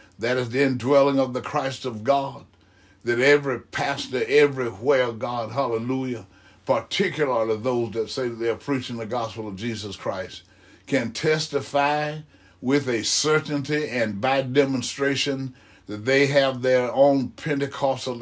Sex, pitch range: male, 115-140 Hz